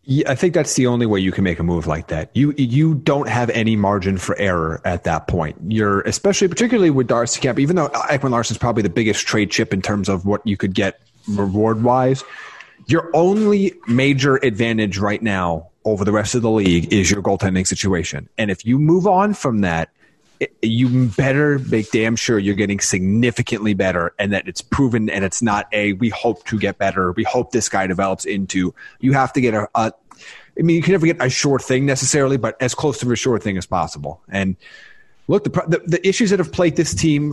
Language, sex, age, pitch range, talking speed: English, male, 30-49, 105-140 Hz, 220 wpm